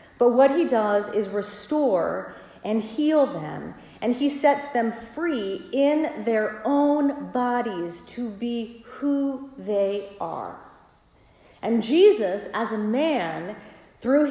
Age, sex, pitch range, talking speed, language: 40-59, female, 205-270 Hz, 120 wpm, English